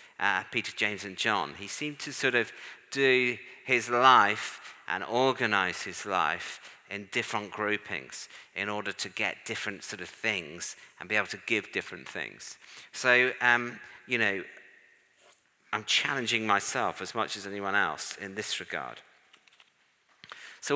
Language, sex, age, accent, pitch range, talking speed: English, male, 50-69, British, 100-125 Hz, 145 wpm